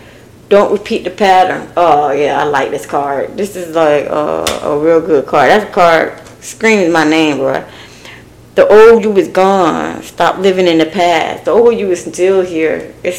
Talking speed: 190 wpm